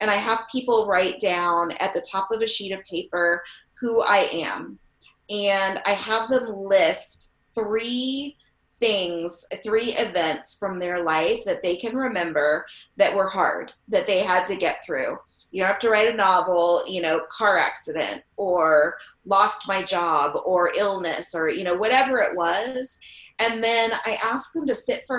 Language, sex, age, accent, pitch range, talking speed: English, female, 30-49, American, 180-225 Hz, 175 wpm